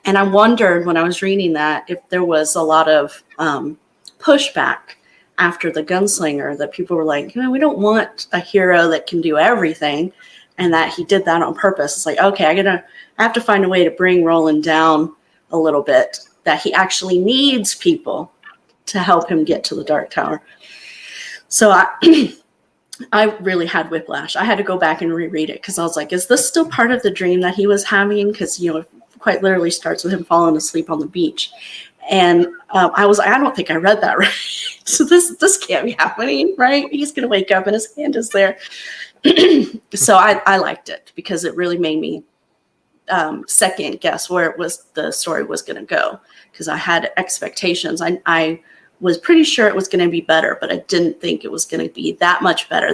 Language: English